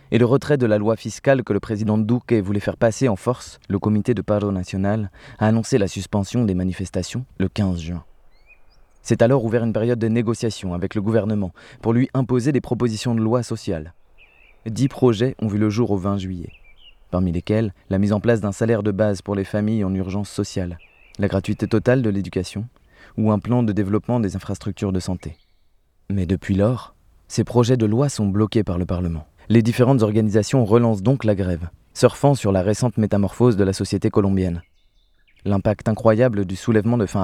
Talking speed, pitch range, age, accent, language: 195 wpm, 95-115 Hz, 20-39, French, French